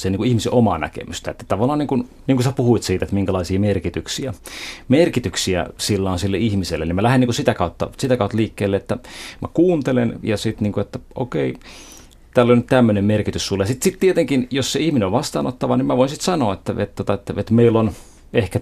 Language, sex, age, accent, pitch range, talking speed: Finnish, male, 30-49, native, 95-120 Hz, 220 wpm